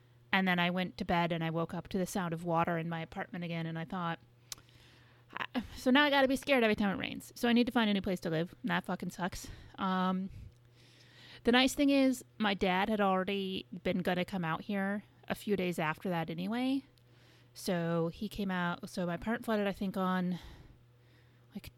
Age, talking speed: 30-49, 220 wpm